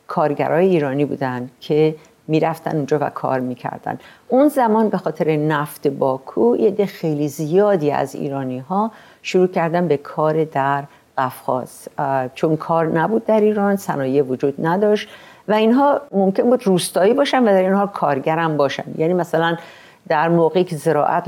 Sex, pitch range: female, 150-215 Hz